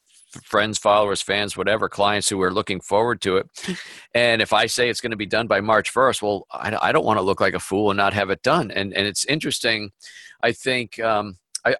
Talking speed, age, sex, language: 230 wpm, 50-69, male, English